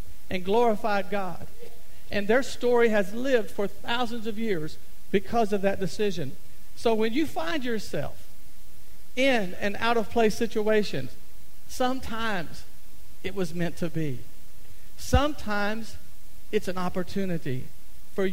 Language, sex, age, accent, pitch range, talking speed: English, male, 50-69, American, 175-230 Hz, 125 wpm